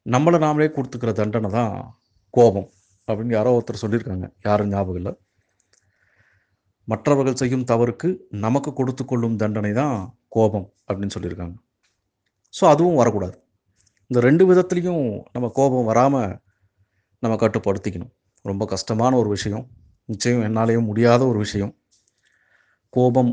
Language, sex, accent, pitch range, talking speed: Tamil, male, native, 100-125 Hz, 110 wpm